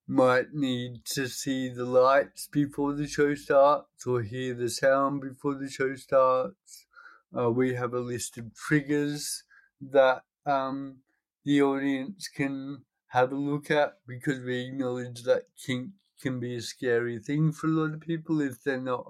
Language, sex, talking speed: English, male, 165 wpm